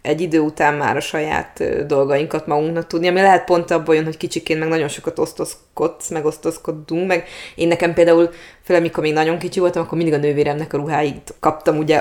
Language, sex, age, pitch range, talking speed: Hungarian, female, 20-39, 165-200 Hz, 185 wpm